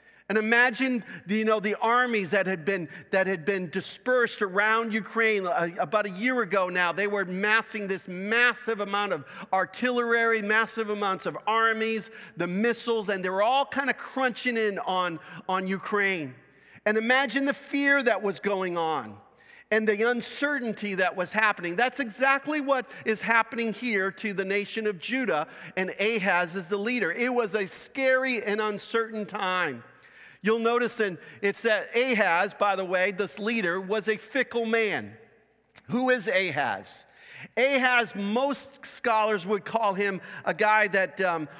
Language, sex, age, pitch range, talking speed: English, male, 40-59, 195-235 Hz, 160 wpm